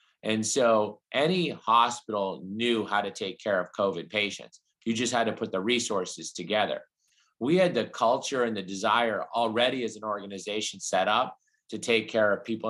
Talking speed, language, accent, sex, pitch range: 180 wpm, English, American, male, 100-115 Hz